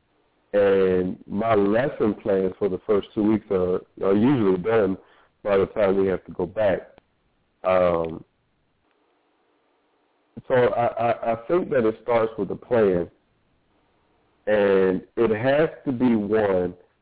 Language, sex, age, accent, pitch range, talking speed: English, male, 50-69, American, 95-120 Hz, 140 wpm